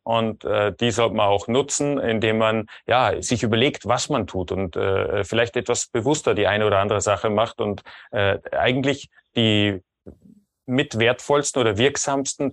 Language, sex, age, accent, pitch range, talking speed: German, male, 30-49, German, 105-135 Hz, 165 wpm